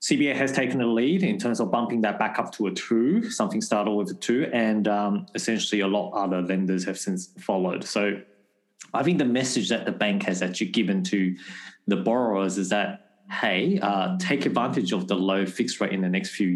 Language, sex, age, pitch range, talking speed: English, male, 20-39, 90-115 Hz, 215 wpm